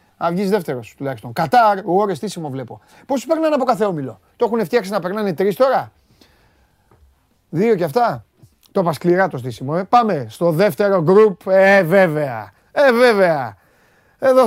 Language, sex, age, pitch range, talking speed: Greek, male, 30-49, 150-240 Hz, 165 wpm